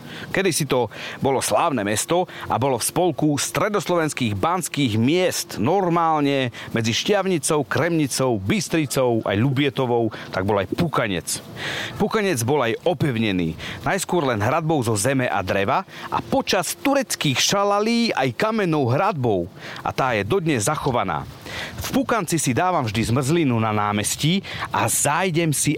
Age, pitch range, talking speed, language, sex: 40-59, 115-165 Hz, 135 wpm, Slovak, male